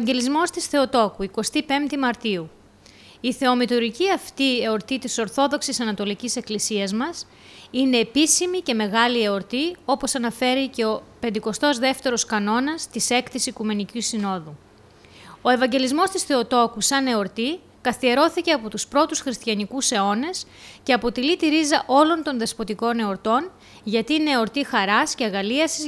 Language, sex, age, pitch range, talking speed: Greek, female, 20-39, 220-285 Hz, 130 wpm